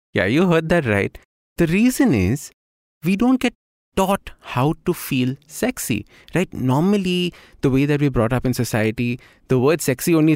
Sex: male